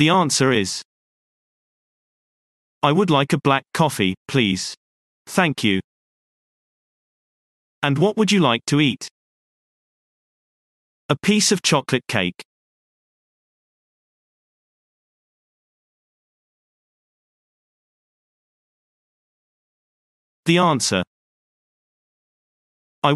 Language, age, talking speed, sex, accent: English, 40-59, 70 wpm, male, British